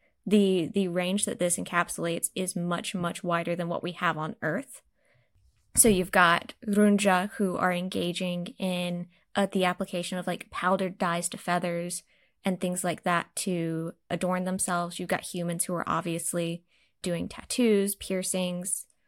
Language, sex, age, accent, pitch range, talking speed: English, female, 20-39, American, 175-205 Hz, 155 wpm